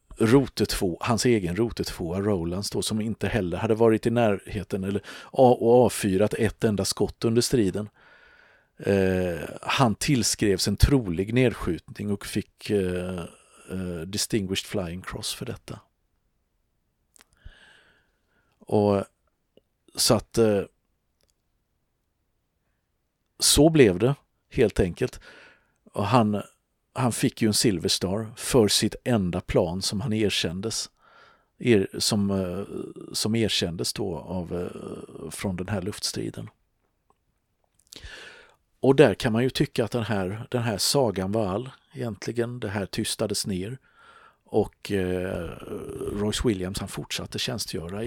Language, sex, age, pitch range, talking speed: Swedish, male, 50-69, 95-115 Hz, 120 wpm